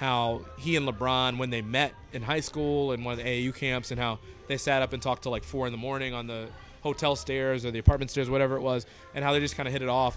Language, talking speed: English, 290 wpm